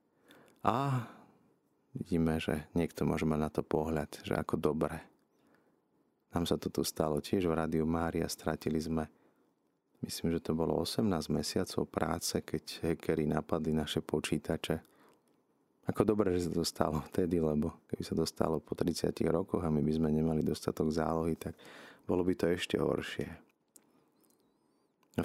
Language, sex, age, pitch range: Slovak, male, 30-49, 75-85 Hz